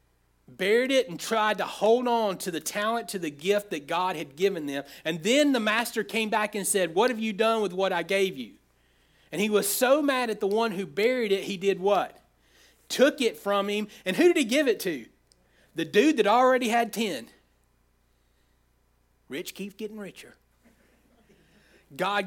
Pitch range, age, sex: 185-235 Hz, 40-59, male